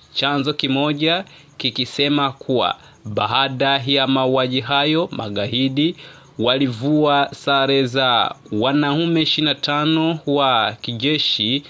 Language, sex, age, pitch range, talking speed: English, male, 30-49, 135-165 Hz, 75 wpm